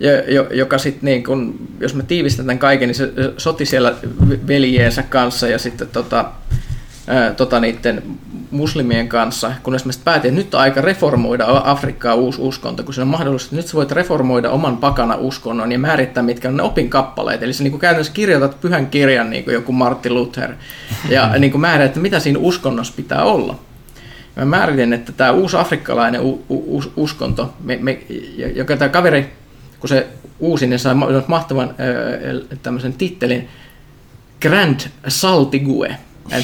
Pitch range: 125-140 Hz